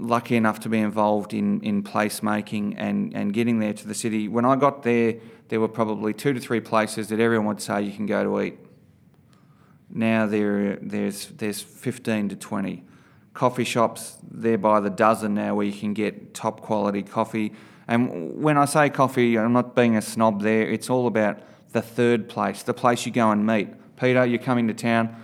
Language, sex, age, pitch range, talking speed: English, male, 30-49, 110-120 Hz, 200 wpm